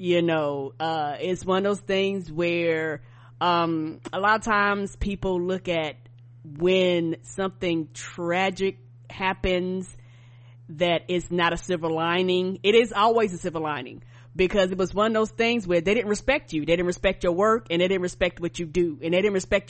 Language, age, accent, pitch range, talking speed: English, 30-49, American, 160-205 Hz, 185 wpm